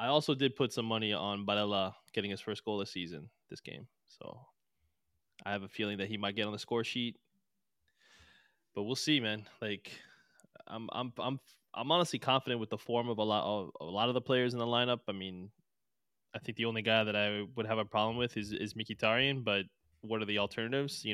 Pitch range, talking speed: 100-120 Hz, 225 wpm